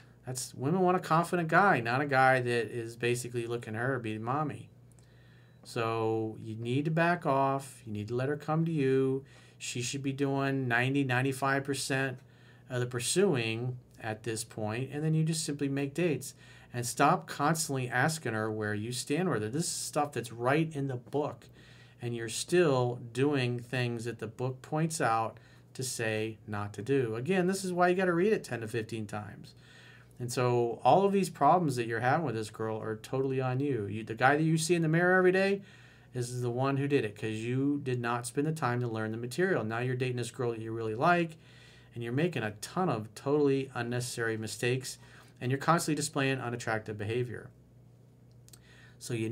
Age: 40-59